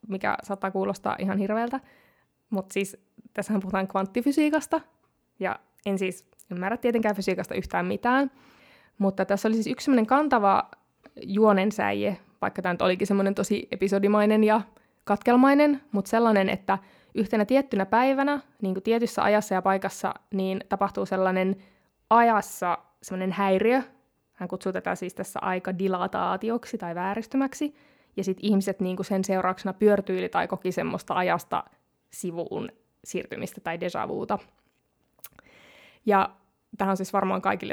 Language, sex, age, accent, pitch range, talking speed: Finnish, female, 20-39, native, 190-230 Hz, 130 wpm